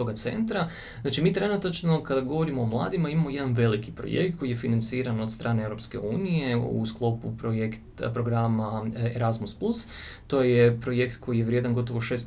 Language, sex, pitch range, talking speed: Croatian, male, 110-130 Hz, 165 wpm